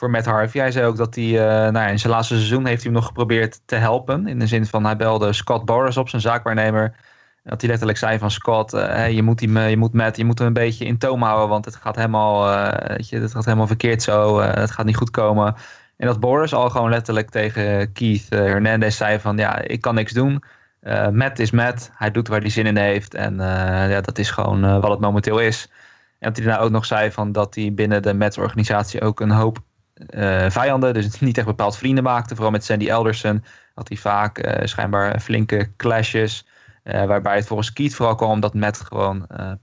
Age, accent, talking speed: 20-39, Dutch, 240 wpm